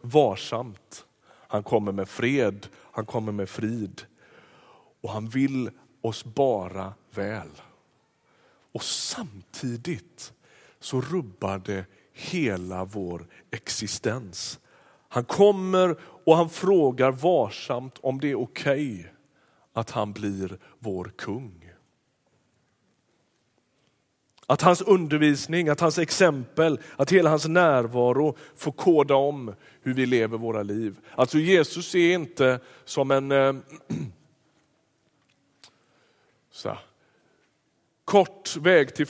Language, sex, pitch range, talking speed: Swedish, male, 115-150 Hz, 105 wpm